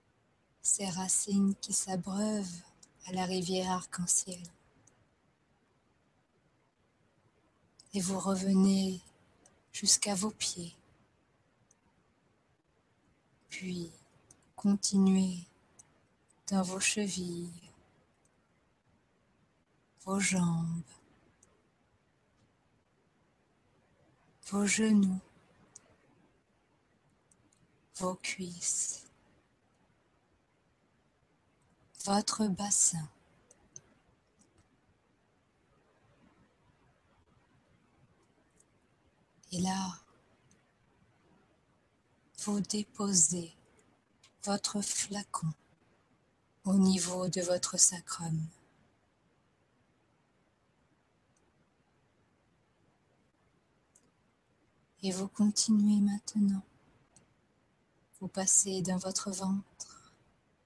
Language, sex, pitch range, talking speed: French, female, 175-200 Hz, 45 wpm